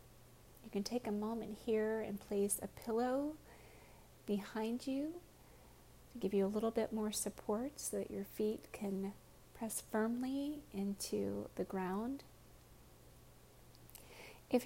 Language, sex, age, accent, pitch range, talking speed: English, female, 30-49, American, 200-240 Hz, 125 wpm